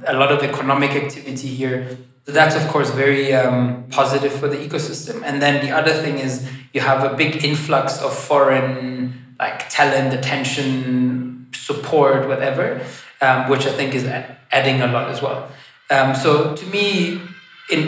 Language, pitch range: English, 125-145 Hz